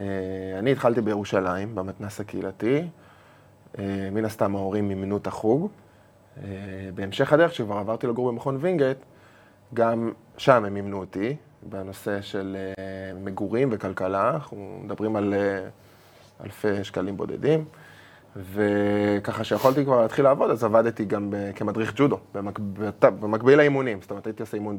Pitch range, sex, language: 100-125 Hz, male, Hebrew